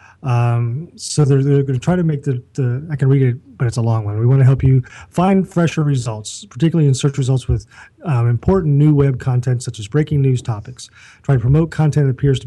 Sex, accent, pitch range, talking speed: male, American, 120-145 Hz, 240 wpm